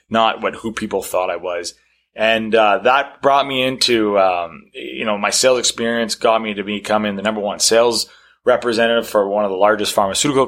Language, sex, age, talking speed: English, male, 20-39, 195 wpm